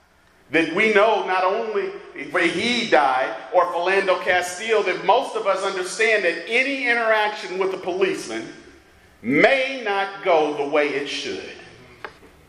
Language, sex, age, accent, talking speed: English, male, 40-59, American, 140 wpm